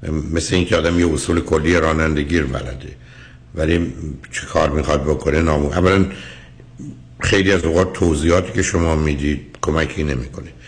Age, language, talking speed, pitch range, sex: 60-79, Persian, 135 wpm, 70-90 Hz, male